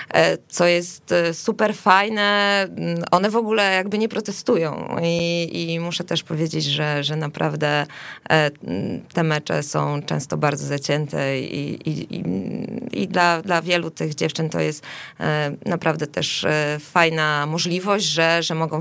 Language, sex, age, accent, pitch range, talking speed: Polish, female, 20-39, native, 150-175 Hz, 130 wpm